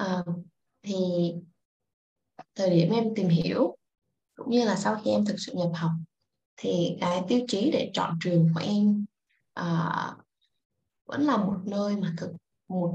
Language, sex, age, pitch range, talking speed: Vietnamese, female, 20-39, 170-240 Hz, 160 wpm